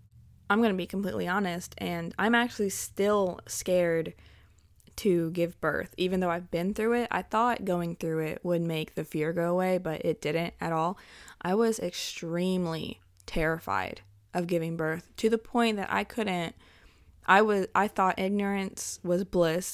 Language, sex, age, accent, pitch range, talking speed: English, female, 20-39, American, 165-200 Hz, 170 wpm